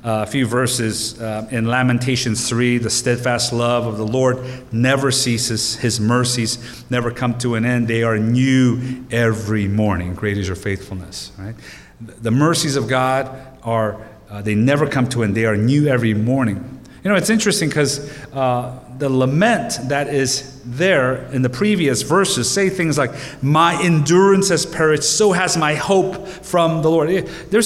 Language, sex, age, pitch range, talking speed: English, male, 40-59, 110-170 Hz, 175 wpm